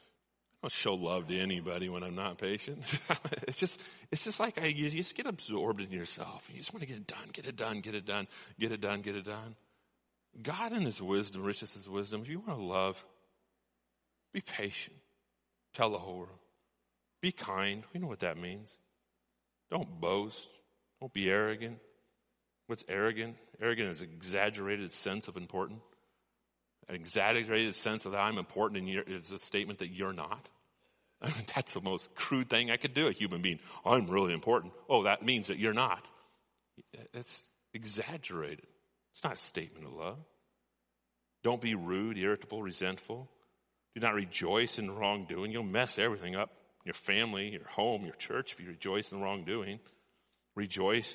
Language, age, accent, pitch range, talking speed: English, 40-59, American, 95-120 Hz, 175 wpm